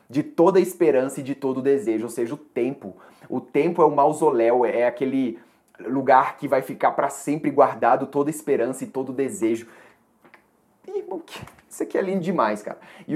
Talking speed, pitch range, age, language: 185 wpm, 125-165 Hz, 20-39, Portuguese